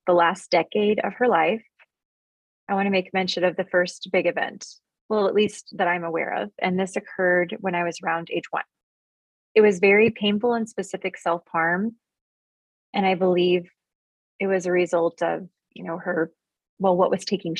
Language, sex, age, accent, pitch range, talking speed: English, female, 20-39, American, 175-210 Hz, 180 wpm